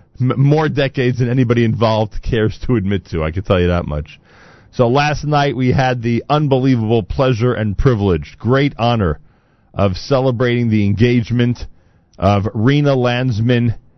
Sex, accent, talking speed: male, American, 145 wpm